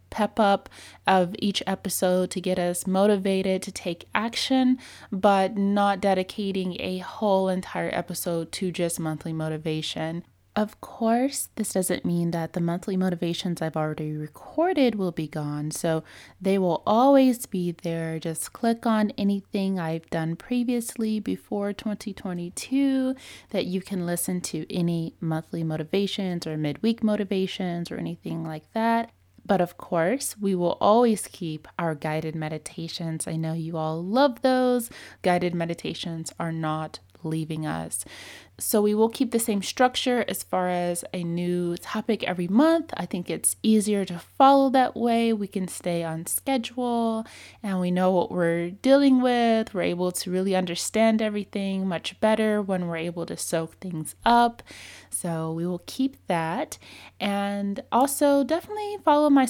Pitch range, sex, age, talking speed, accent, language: 170-220 Hz, female, 20-39, 150 wpm, American, English